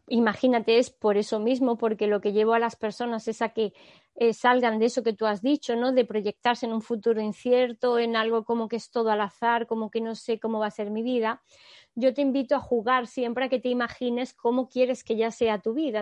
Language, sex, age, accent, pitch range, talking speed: Spanish, female, 20-39, Spanish, 230-275 Hz, 245 wpm